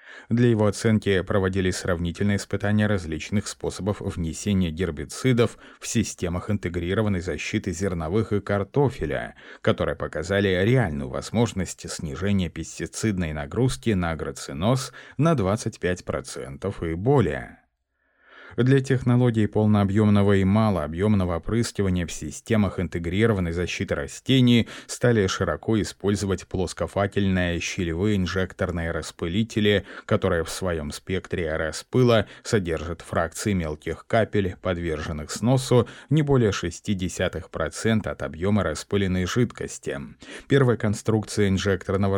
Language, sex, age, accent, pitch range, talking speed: Russian, male, 30-49, native, 90-110 Hz, 100 wpm